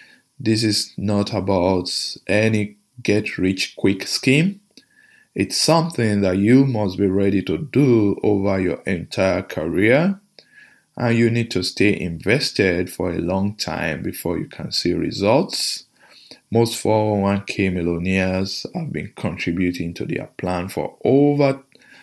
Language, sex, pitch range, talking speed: English, male, 90-120 Hz, 125 wpm